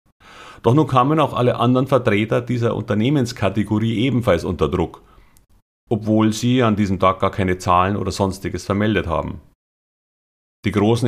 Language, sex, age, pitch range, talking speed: German, male, 30-49, 95-115 Hz, 140 wpm